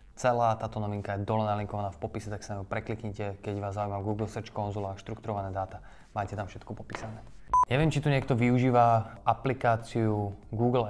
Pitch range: 100-115 Hz